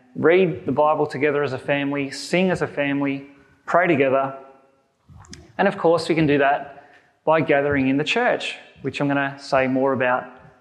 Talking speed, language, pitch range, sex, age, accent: 180 wpm, English, 140-190 Hz, male, 20-39, Australian